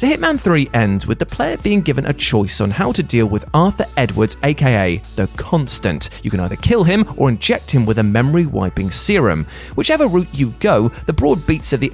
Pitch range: 110-155 Hz